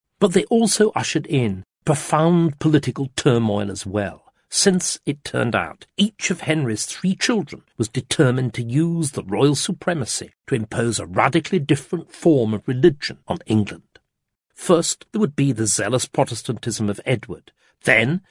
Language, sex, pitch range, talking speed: English, male, 120-165 Hz, 150 wpm